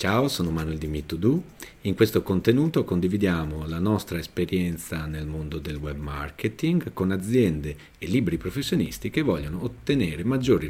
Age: 40-59